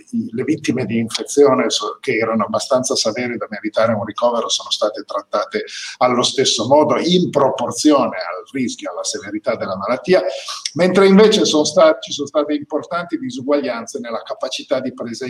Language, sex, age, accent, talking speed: Italian, male, 50-69, native, 150 wpm